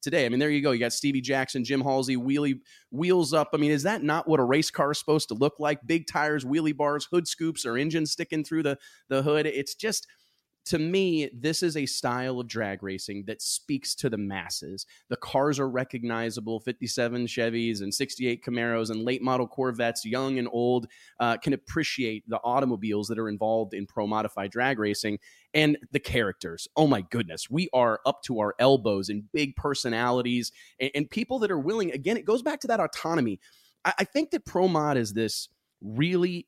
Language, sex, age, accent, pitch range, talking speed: English, male, 30-49, American, 120-150 Hz, 195 wpm